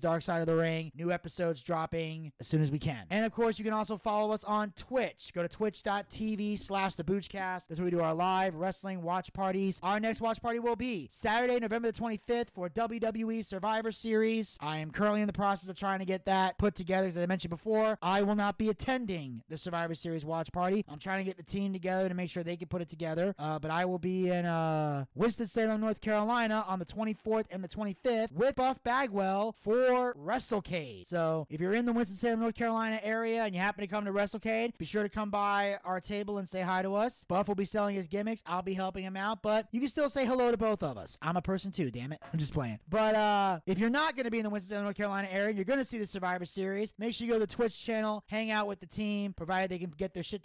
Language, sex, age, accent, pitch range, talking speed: English, male, 30-49, American, 180-220 Hz, 250 wpm